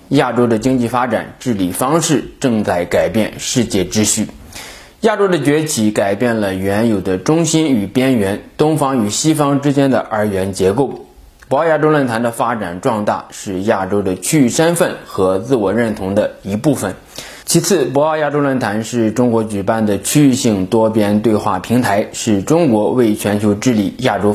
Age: 20-39